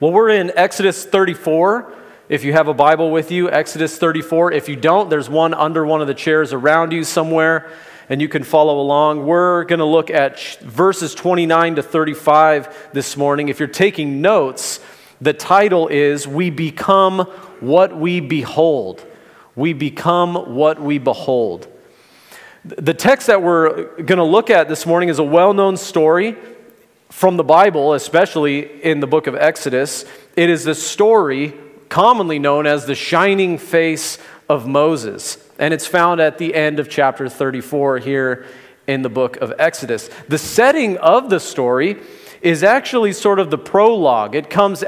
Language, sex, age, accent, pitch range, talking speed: English, male, 40-59, American, 145-175 Hz, 160 wpm